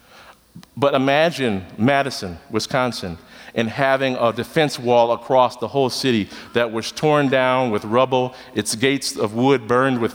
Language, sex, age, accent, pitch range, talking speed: English, male, 40-59, American, 145-210 Hz, 150 wpm